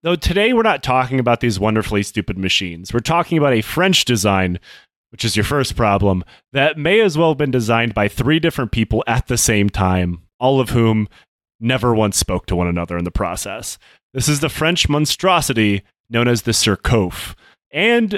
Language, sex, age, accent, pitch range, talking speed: English, male, 30-49, American, 100-150 Hz, 190 wpm